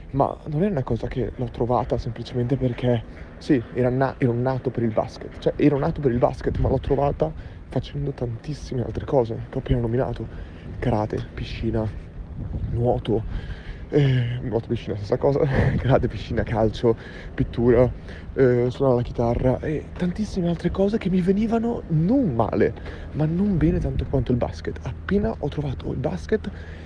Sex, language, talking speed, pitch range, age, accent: male, Italian, 170 wpm, 115-155 Hz, 30-49, native